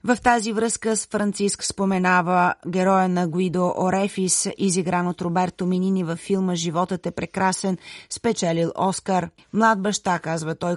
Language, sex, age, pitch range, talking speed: Bulgarian, female, 30-49, 175-195 Hz, 140 wpm